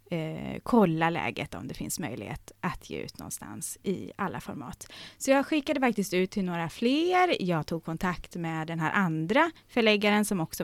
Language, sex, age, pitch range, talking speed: Swedish, female, 30-49, 160-235 Hz, 180 wpm